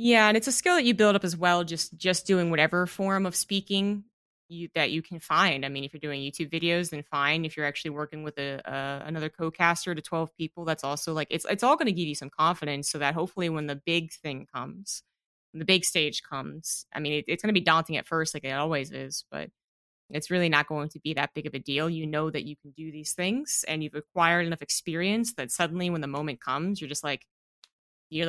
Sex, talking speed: female, 250 wpm